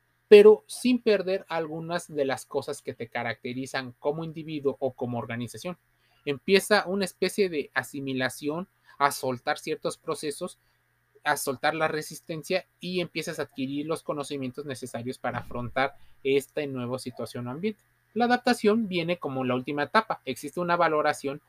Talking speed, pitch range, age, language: 145 wpm, 130-180 Hz, 30-49, Spanish